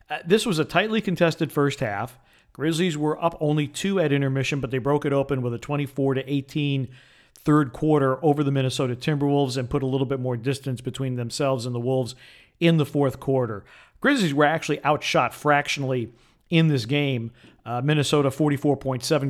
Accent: American